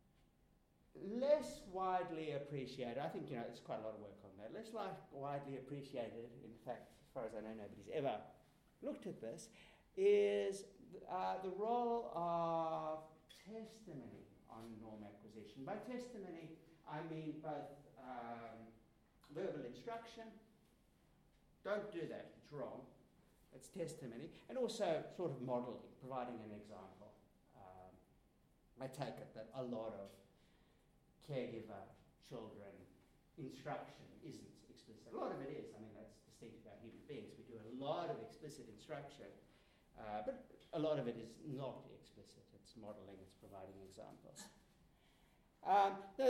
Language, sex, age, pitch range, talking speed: English, male, 60-79, 110-185 Hz, 145 wpm